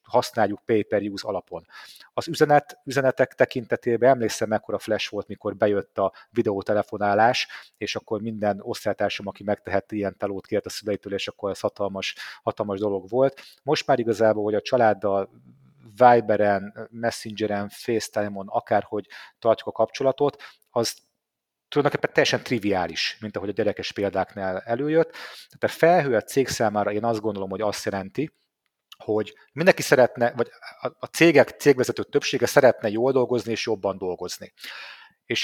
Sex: male